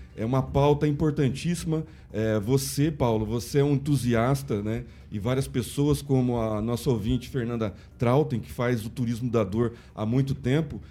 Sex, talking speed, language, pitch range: male, 165 wpm, Portuguese, 125-160 Hz